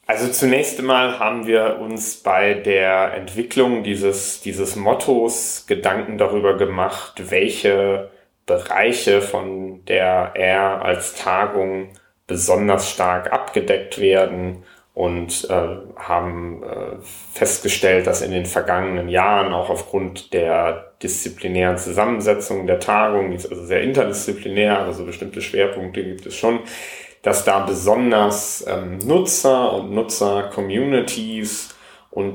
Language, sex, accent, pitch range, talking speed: German, male, German, 95-105 Hz, 115 wpm